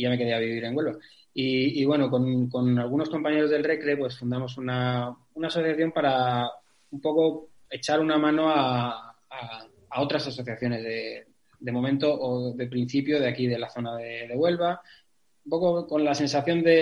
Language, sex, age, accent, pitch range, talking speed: Spanish, male, 20-39, Spanish, 125-150 Hz, 190 wpm